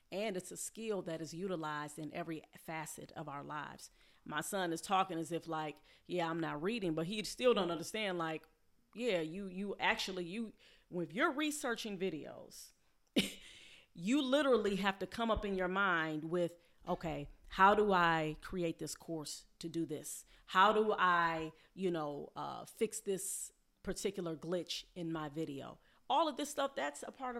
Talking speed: 175 wpm